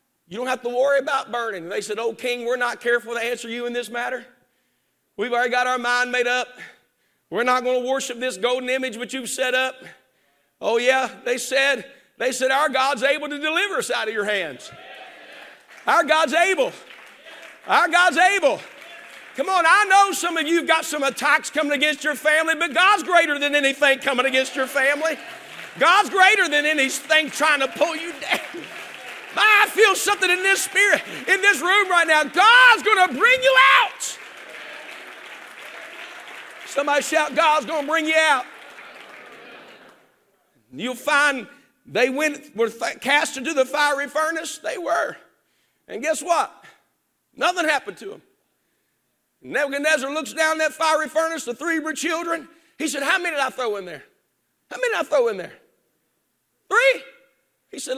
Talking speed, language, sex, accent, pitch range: 170 wpm, English, male, American, 260-335 Hz